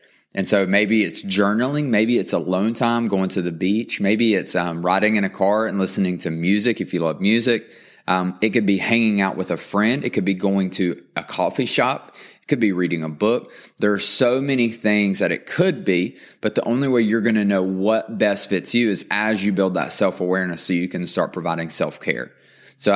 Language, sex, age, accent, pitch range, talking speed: English, male, 20-39, American, 95-110 Hz, 220 wpm